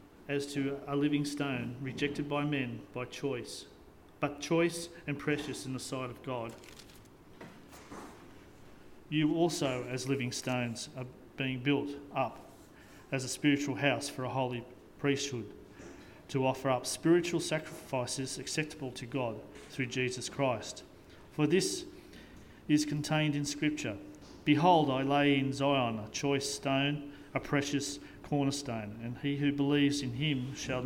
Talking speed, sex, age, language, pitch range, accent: 140 wpm, male, 40-59, English, 125-145 Hz, Australian